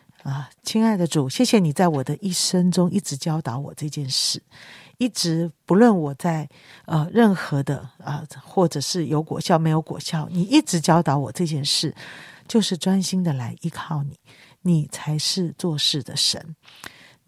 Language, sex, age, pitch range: Chinese, female, 40-59, 145-180 Hz